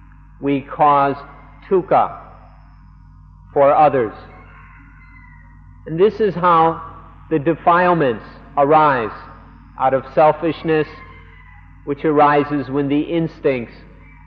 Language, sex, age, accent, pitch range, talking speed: English, male, 50-69, American, 120-150 Hz, 85 wpm